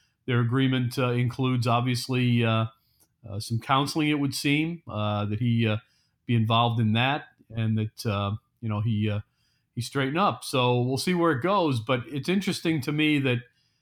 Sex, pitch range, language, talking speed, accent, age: male, 120-140 Hz, English, 180 wpm, American, 40-59